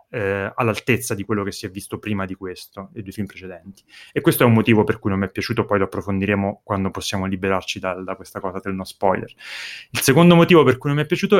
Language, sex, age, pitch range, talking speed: Italian, male, 30-49, 105-135 Hz, 245 wpm